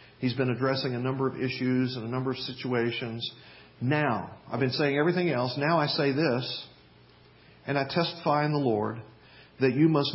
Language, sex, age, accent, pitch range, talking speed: English, male, 50-69, American, 120-150 Hz, 185 wpm